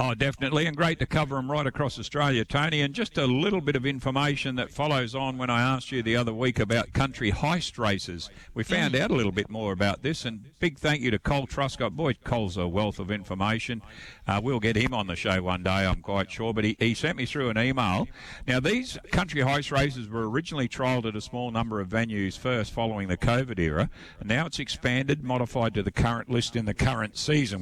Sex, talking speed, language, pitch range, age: male, 230 wpm, English, 100-135 Hz, 50-69